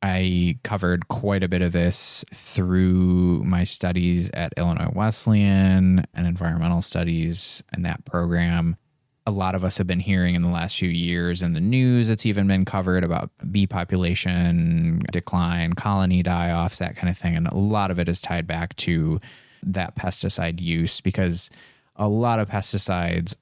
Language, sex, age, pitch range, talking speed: English, male, 20-39, 85-100 Hz, 165 wpm